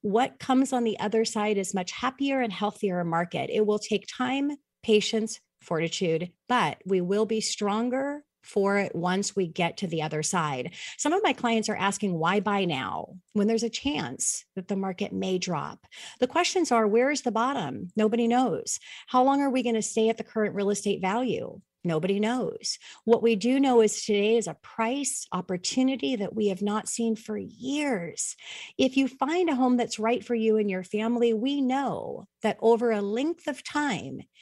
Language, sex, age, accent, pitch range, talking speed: English, female, 40-59, American, 200-250 Hz, 195 wpm